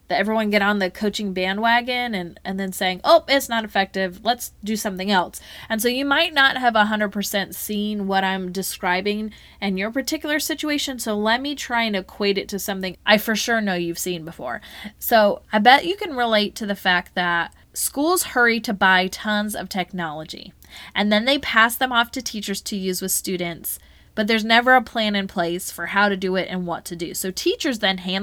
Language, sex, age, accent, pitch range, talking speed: English, female, 20-39, American, 195-245 Hz, 210 wpm